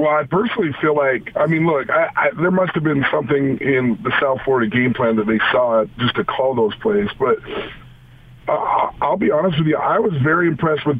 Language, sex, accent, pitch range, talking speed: English, male, American, 130-160 Hz, 225 wpm